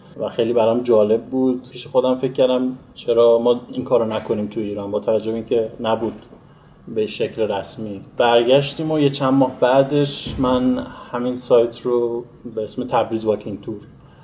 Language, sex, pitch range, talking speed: Persian, male, 110-125 Hz, 160 wpm